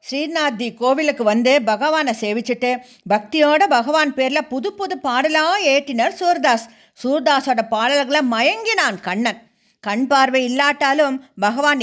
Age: 50-69